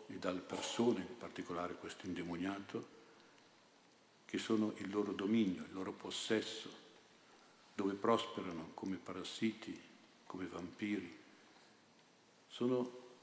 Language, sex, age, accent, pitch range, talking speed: Italian, male, 60-79, native, 95-110 Hz, 100 wpm